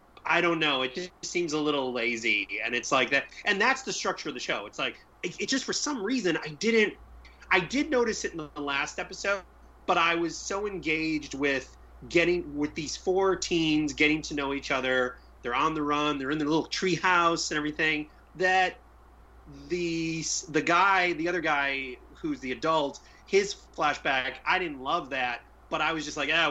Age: 30-49